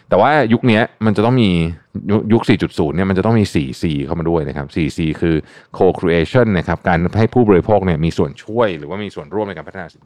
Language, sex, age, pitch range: Thai, male, 20-39, 80-110 Hz